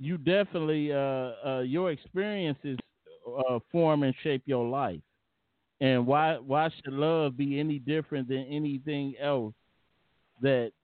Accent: American